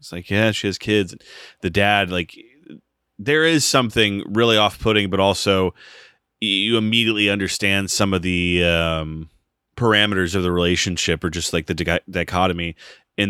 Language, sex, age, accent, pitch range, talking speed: English, male, 30-49, American, 85-105 Hz, 155 wpm